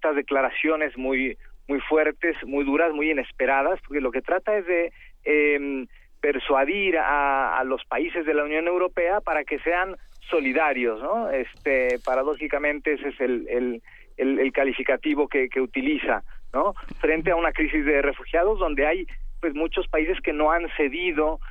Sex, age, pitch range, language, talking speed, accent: male, 40-59, 140-165 Hz, Spanish, 160 wpm, Mexican